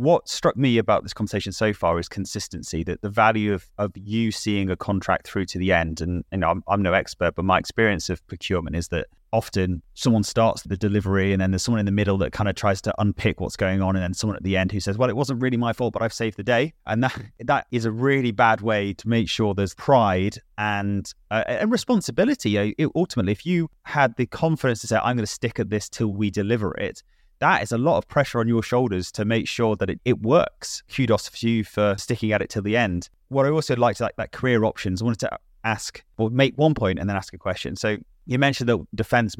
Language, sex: English, male